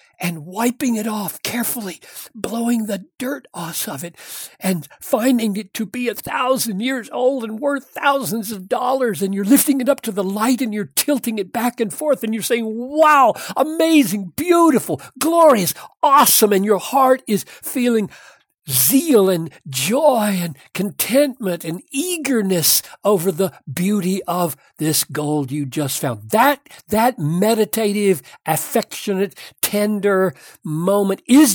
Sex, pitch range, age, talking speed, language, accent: male, 165-235 Hz, 60-79, 145 wpm, English, American